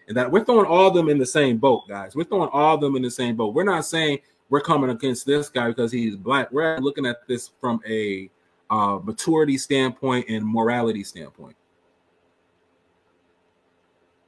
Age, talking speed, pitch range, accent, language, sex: 30-49, 180 wpm, 85-145 Hz, American, English, male